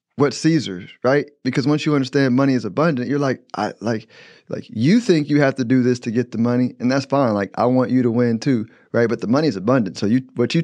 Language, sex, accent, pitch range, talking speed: English, male, American, 110-130 Hz, 260 wpm